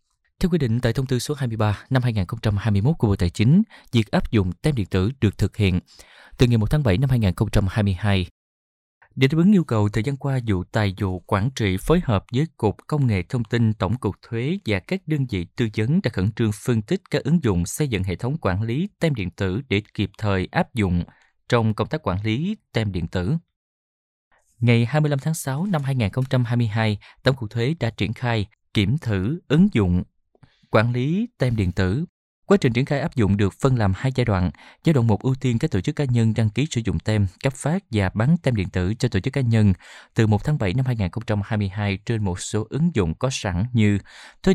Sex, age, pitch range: male, 20-39, 100-135 Hz